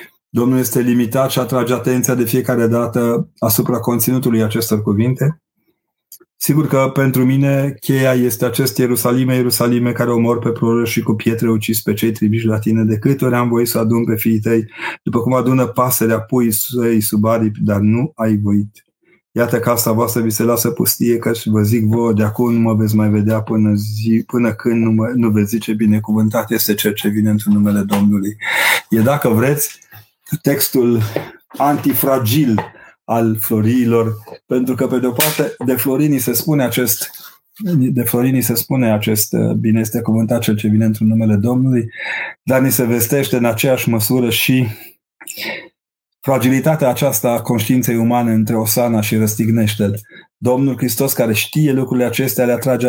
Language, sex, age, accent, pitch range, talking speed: Romanian, male, 30-49, native, 110-125 Hz, 160 wpm